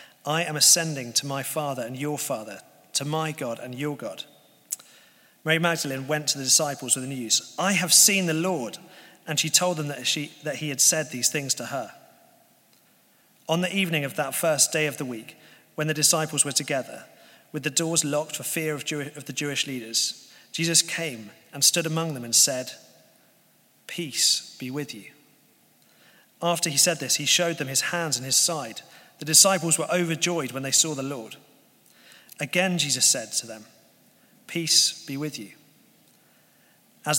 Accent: British